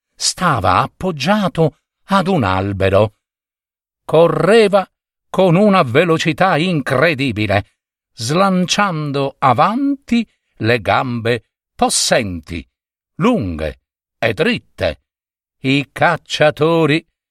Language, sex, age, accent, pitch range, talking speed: Italian, male, 60-79, native, 120-185 Hz, 70 wpm